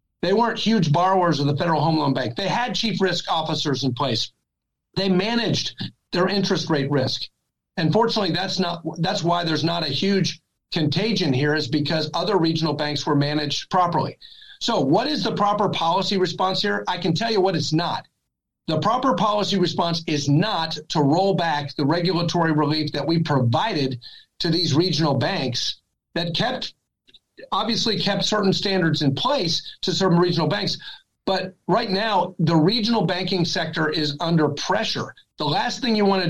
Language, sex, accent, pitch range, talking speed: English, male, American, 155-190 Hz, 170 wpm